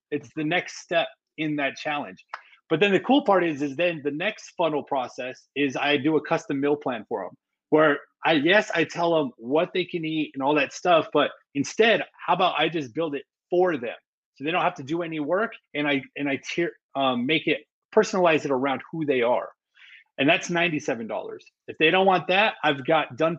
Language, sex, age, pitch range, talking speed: English, male, 30-49, 140-175 Hz, 220 wpm